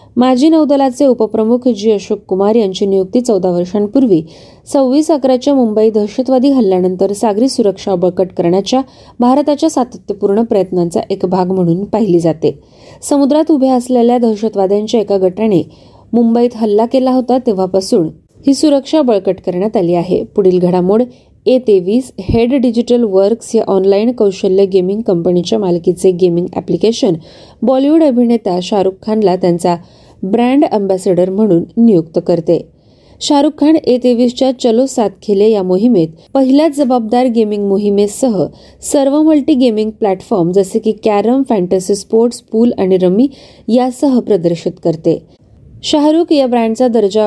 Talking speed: 125 wpm